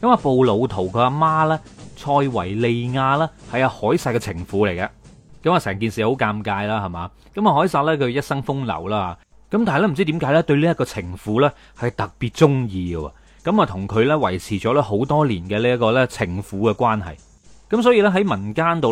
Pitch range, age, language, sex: 105-145 Hz, 30-49, Chinese, male